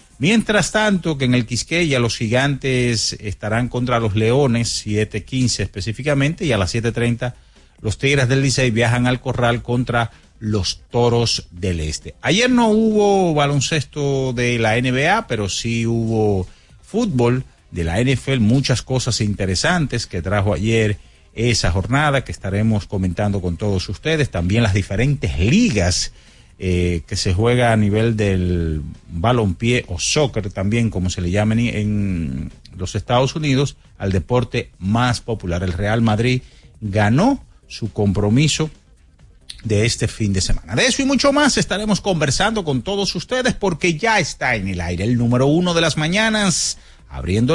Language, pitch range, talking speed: Spanish, 105-140 Hz, 155 wpm